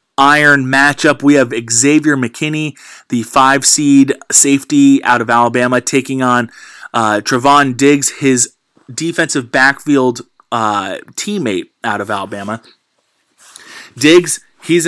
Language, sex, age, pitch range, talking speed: English, male, 20-39, 120-145 Hz, 115 wpm